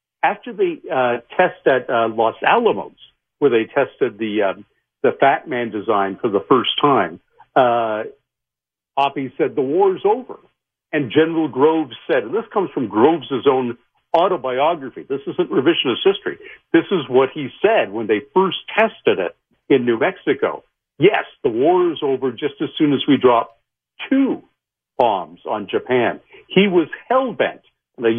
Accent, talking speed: American, 160 wpm